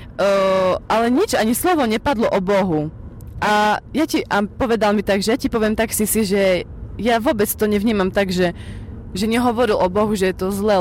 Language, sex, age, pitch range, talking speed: Slovak, female, 20-39, 190-230 Hz, 205 wpm